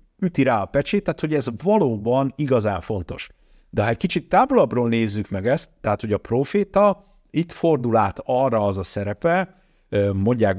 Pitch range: 100-135 Hz